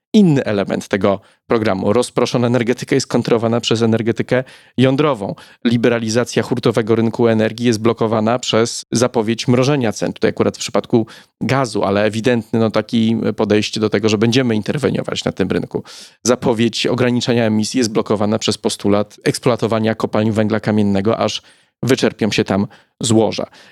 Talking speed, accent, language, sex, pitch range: 135 wpm, native, Polish, male, 105-125 Hz